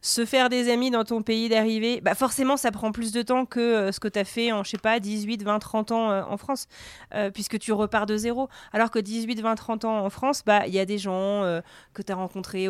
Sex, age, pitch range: female, 30-49, 205-250 Hz